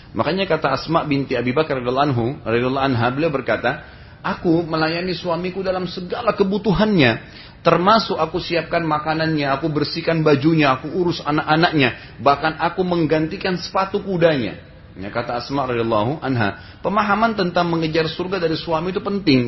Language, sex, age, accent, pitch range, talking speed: Indonesian, male, 30-49, native, 130-175 Hz, 135 wpm